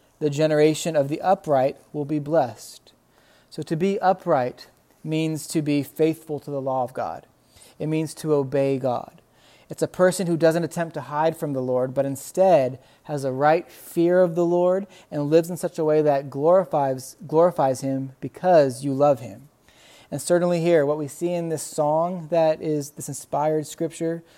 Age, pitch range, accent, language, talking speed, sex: 30-49, 140-165 Hz, American, English, 180 wpm, male